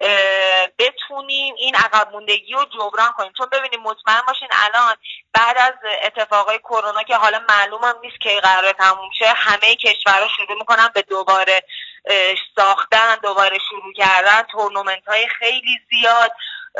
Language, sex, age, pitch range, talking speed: Persian, female, 30-49, 195-250 Hz, 130 wpm